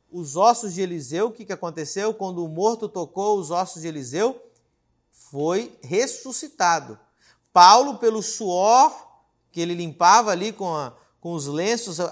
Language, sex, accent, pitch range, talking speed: Portuguese, male, Brazilian, 170-225 Hz, 140 wpm